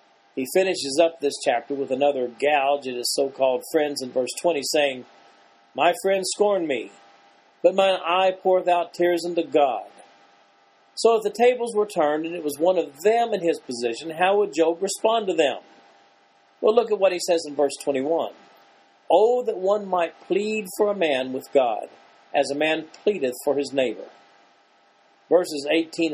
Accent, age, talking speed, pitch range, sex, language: American, 40-59, 175 wpm, 120-180 Hz, male, English